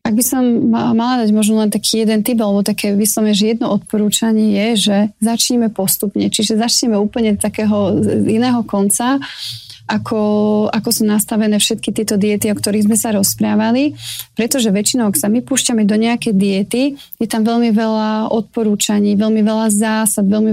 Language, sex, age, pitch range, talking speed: Slovak, female, 30-49, 210-235 Hz, 165 wpm